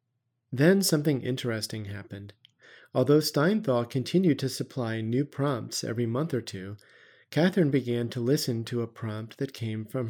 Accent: American